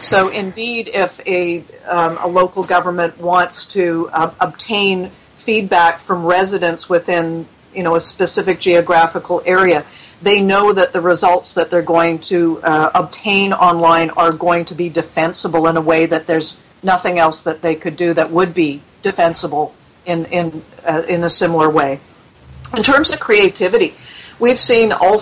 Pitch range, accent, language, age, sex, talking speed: 165-190 Hz, American, English, 50-69, female, 160 wpm